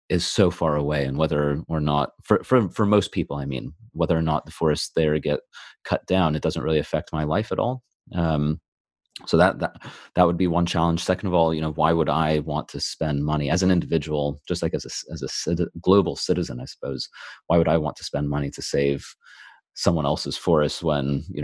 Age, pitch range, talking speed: 30-49, 75-85 Hz, 225 wpm